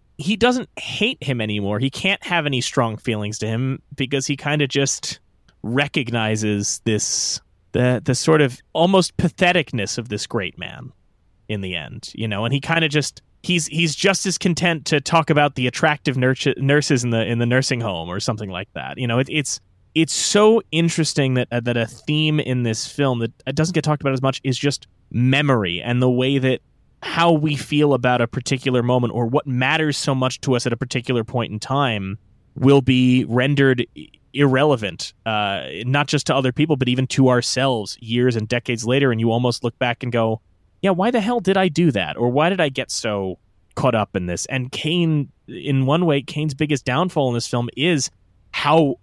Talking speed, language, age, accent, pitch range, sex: 205 wpm, English, 30-49, American, 115-150 Hz, male